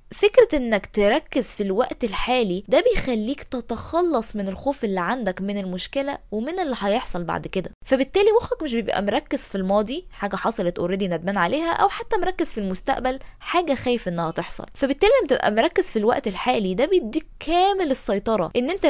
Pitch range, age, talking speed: 200-305 Hz, 20-39, 170 wpm